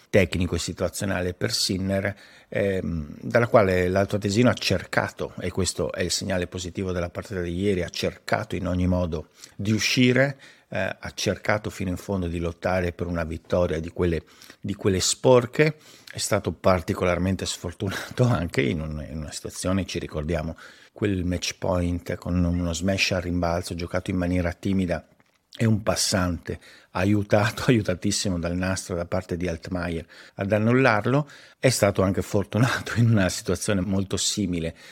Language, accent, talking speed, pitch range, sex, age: Italian, native, 155 wpm, 90-105 Hz, male, 50-69